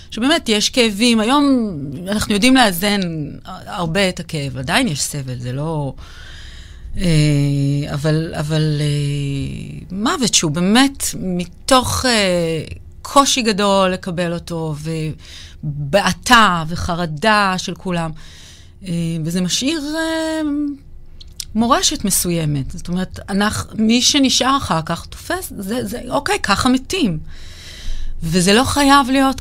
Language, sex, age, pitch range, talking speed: Hebrew, female, 30-49, 145-220 Hz, 100 wpm